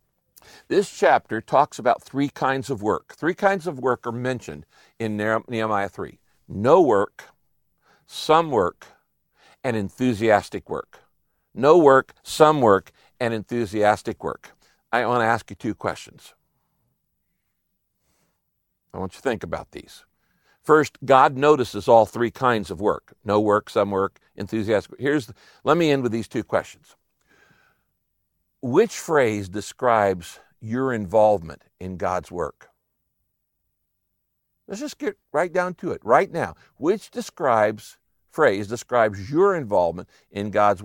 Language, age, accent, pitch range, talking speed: English, 60-79, American, 105-135 Hz, 135 wpm